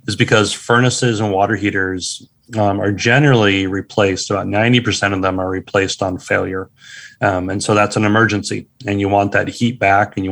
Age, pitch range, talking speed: 30-49, 100-115 Hz, 185 wpm